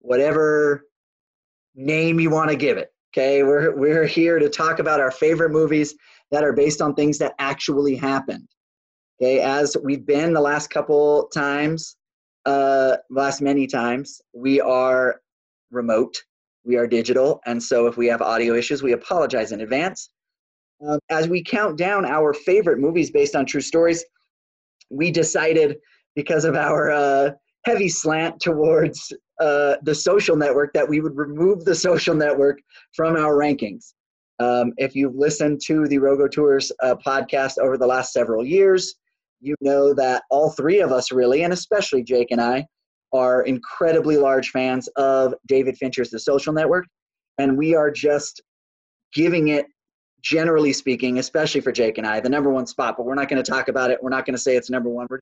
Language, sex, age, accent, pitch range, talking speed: English, male, 30-49, American, 130-160 Hz, 175 wpm